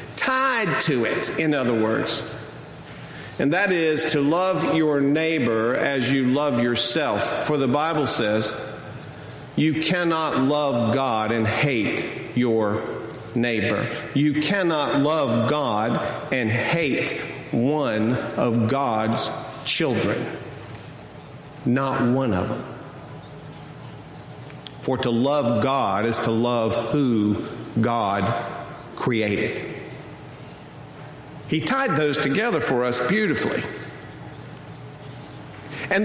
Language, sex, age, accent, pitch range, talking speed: English, male, 50-69, American, 120-200 Hz, 100 wpm